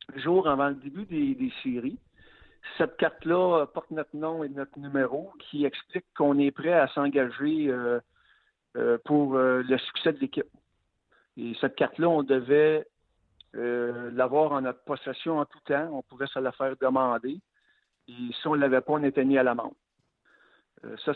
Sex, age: male, 60-79